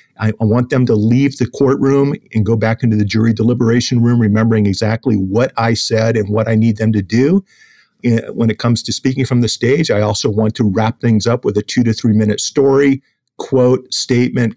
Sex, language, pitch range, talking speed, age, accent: male, English, 110-135 Hz, 210 wpm, 50-69, American